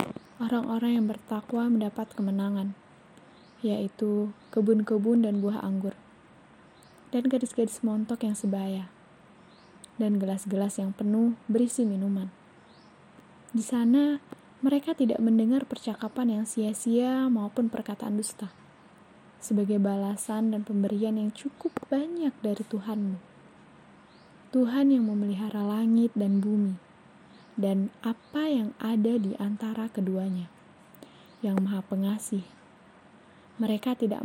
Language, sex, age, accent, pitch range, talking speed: Indonesian, female, 20-39, native, 205-235 Hz, 105 wpm